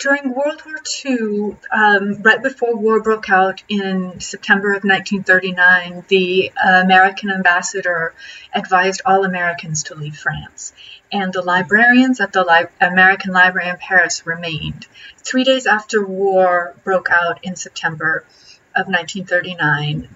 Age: 40-59